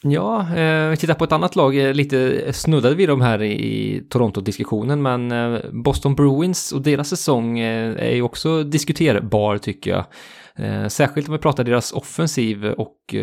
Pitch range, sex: 105-140 Hz, male